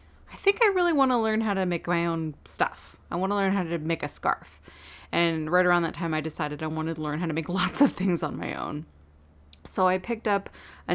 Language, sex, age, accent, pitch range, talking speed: English, female, 30-49, American, 165-200 Hz, 260 wpm